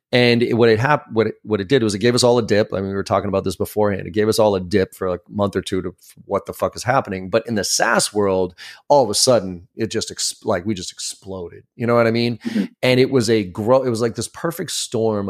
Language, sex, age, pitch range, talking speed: English, male, 30-49, 100-125 Hz, 300 wpm